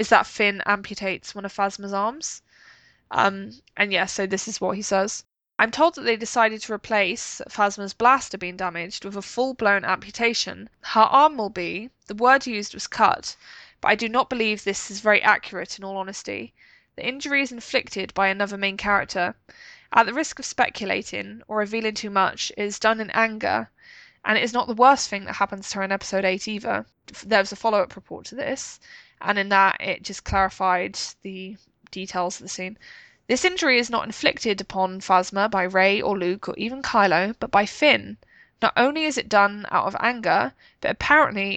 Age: 10-29